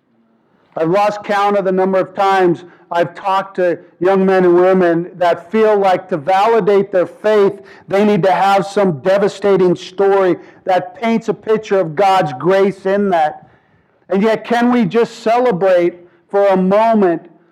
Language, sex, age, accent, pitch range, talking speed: English, male, 50-69, American, 165-205 Hz, 160 wpm